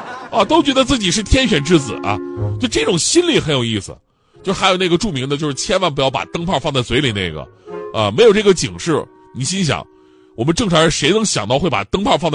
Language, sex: Chinese, male